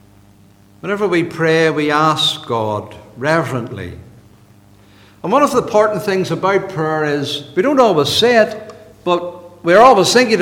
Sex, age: male, 60-79